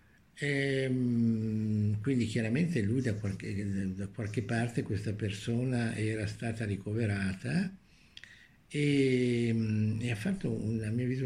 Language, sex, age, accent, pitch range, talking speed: Italian, male, 60-79, native, 105-130 Hz, 105 wpm